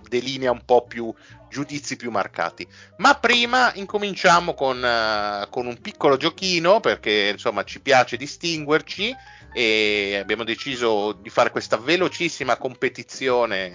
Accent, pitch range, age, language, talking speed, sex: native, 105-150 Hz, 30-49, Italian, 120 wpm, male